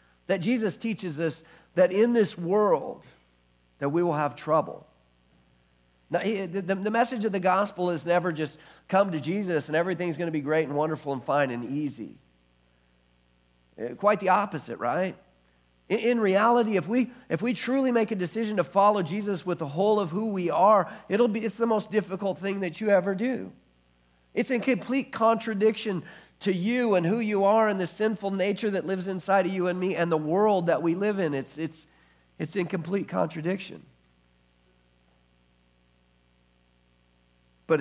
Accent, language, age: American, English, 50-69